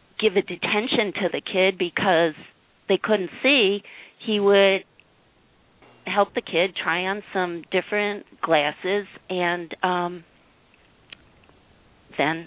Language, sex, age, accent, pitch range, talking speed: English, female, 40-59, American, 165-195 Hz, 110 wpm